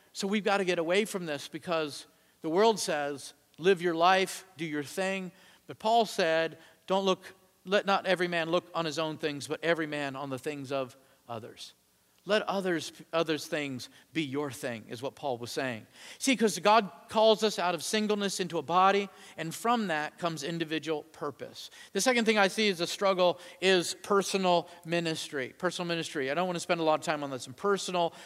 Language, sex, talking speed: English, male, 200 wpm